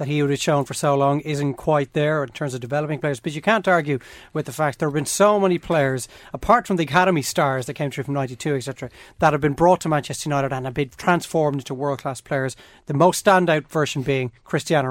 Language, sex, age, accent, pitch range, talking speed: English, male, 30-49, Irish, 140-170 Hz, 240 wpm